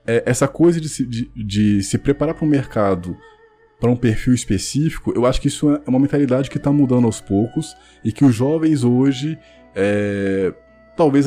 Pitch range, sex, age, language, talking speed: 105-145 Hz, male, 20-39, Portuguese, 185 wpm